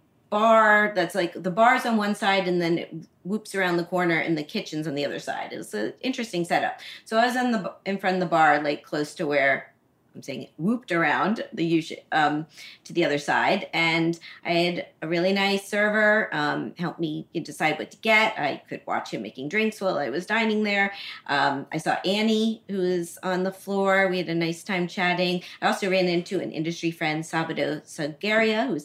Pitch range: 160-200 Hz